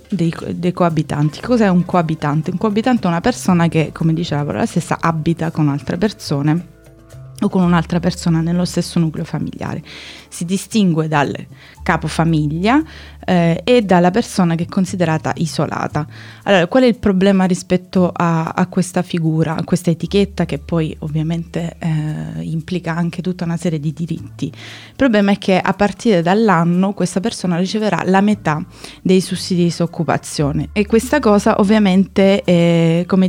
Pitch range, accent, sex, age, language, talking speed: 160-190 Hz, native, female, 20-39, Italian, 155 wpm